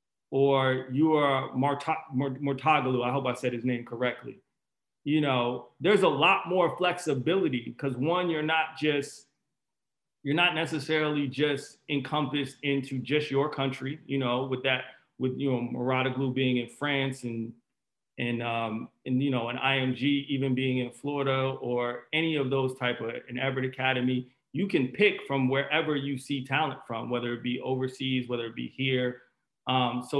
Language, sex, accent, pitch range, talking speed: English, male, American, 130-160 Hz, 165 wpm